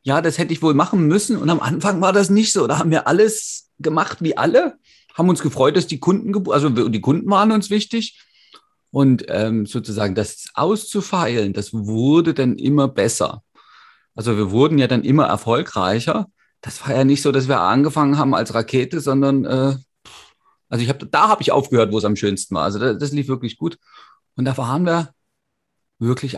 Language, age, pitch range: German, 30-49, 110-145 Hz